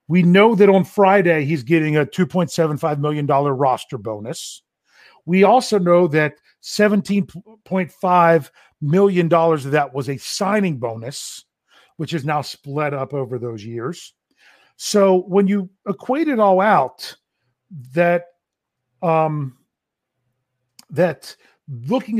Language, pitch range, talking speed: English, 145-185 Hz, 115 wpm